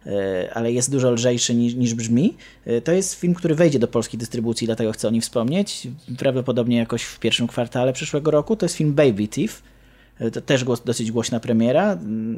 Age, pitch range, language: 20-39, 120-170 Hz, Polish